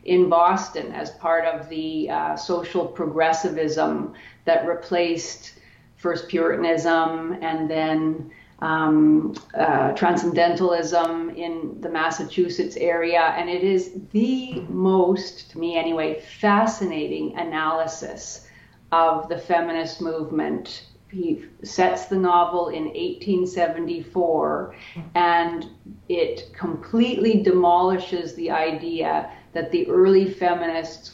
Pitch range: 160-180 Hz